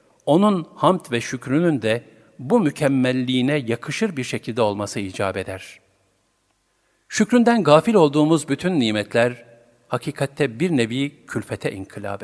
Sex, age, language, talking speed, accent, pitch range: male, 50-69, Turkish, 115 wpm, native, 110-150 Hz